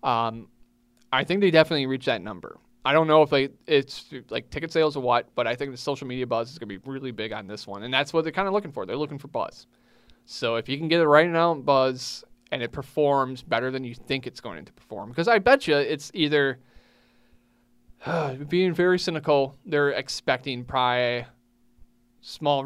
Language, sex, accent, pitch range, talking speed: English, male, American, 120-155 Hz, 215 wpm